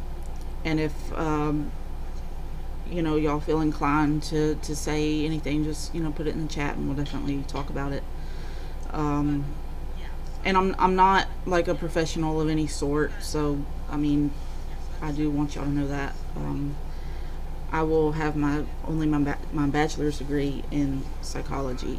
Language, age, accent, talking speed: English, 30-49, American, 165 wpm